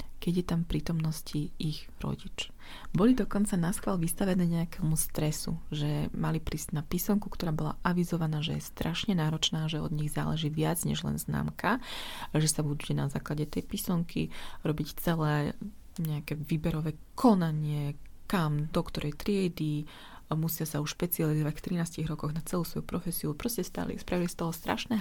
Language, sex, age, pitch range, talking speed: Slovak, female, 30-49, 155-195 Hz, 160 wpm